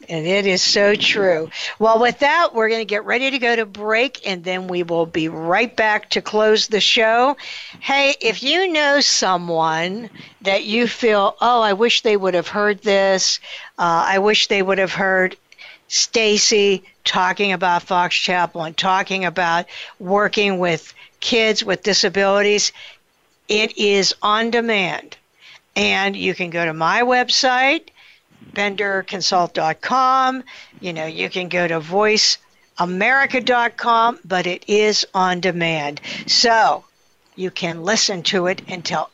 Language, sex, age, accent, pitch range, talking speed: English, female, 60-79, American, 185-235 Hz, 145 wpm